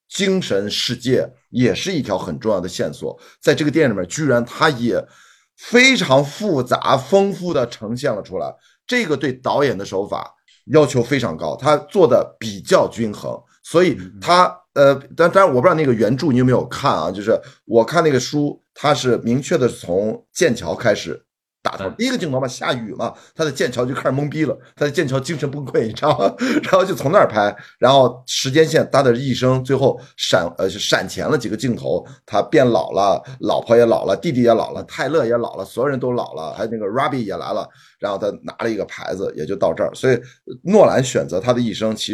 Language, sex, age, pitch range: Chinese, male, 50-69, 120-165 Hz